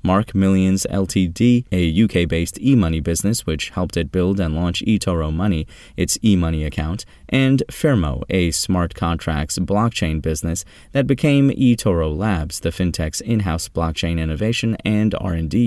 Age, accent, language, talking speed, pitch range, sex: 30-49, American, English, 140 wpm, 80-115 Hz, male